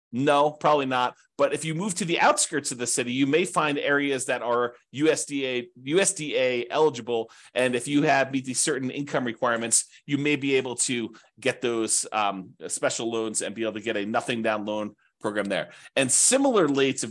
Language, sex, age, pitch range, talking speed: English, male, 30-49, 120-170 Hz, 195 wpm